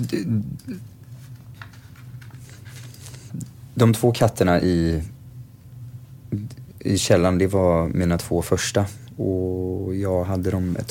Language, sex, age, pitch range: Swedish, male, 30-49, 90-120 Hz